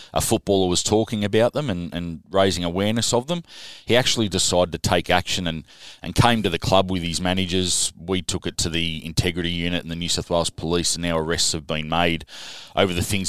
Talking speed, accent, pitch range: 220 wpm, Australian, 85-105 Hz